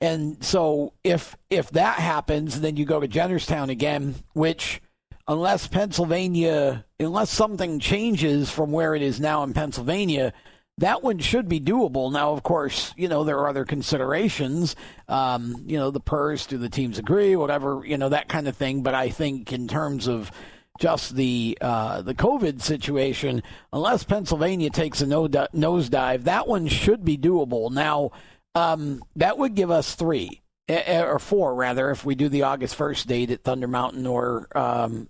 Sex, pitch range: male, 135-170 Hz